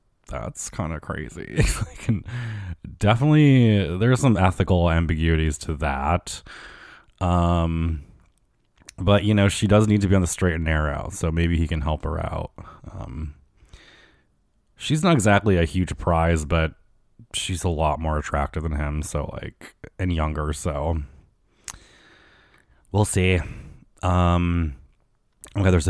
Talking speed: 130 wpm